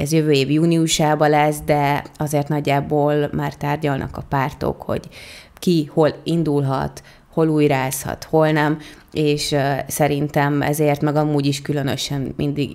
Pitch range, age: 145-165 Hz, 20-39